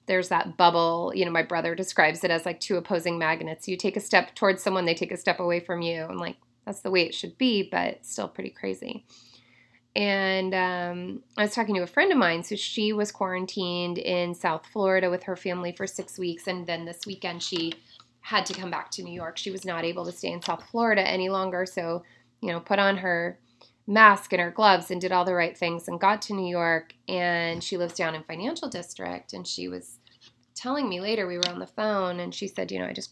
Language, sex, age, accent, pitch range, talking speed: English, female, 20-39, American, 170-195 Hz, 235 wpm